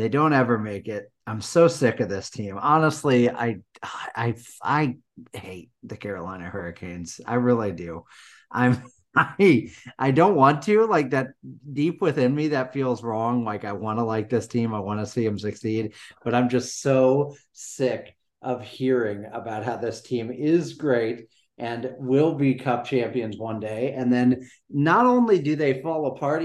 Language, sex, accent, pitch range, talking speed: English, male, American, 110-140 Hz, 175 wpm